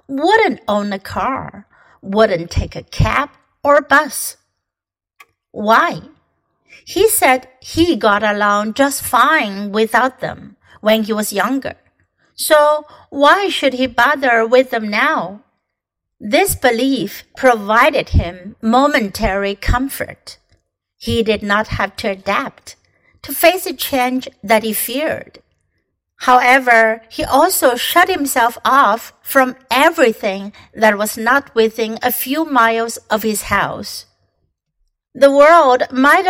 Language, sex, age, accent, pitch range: Chinese, female, 60-79, American, 215-285 Hz